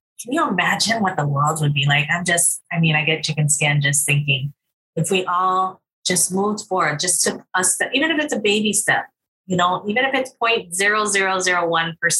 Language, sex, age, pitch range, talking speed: English, female, 20-39, 155-185 Hz, 190 wpm